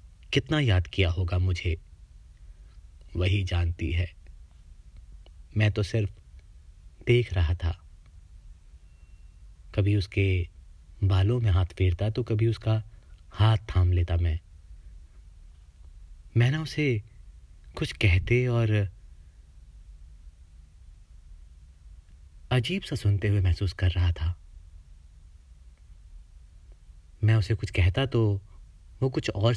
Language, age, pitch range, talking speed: Hindi, 30-49, 75-105 Hz, 95 wpm